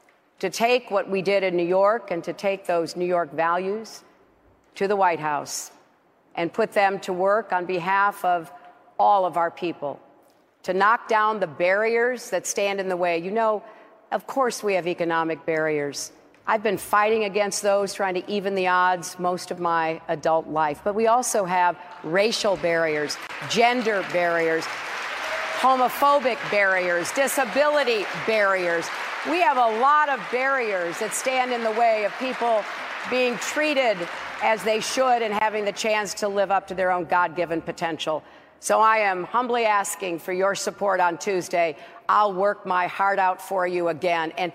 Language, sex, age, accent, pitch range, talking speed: English, female, 50-69, American, 175-230 Hz, 170 wpm